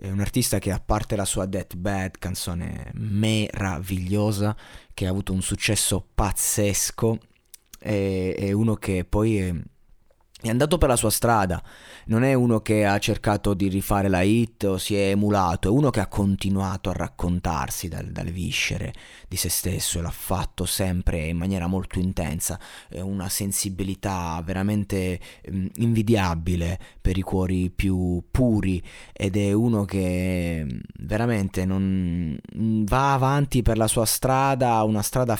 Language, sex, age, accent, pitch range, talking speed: Italian, male, 30-49, native, 95-115 Hz, 150 wpm